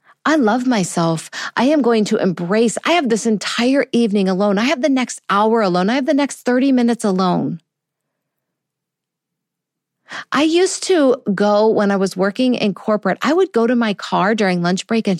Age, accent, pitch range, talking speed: 50-69, American, 185-250 Hz, 185 wpm